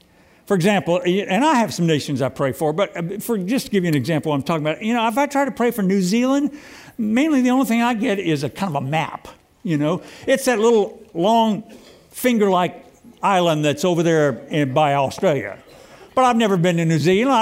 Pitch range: 155-230 Hz